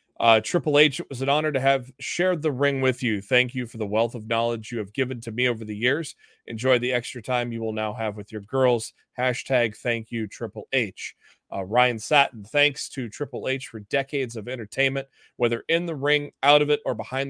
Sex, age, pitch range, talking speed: male, 30-49, 110-135 Hz, 225 wpm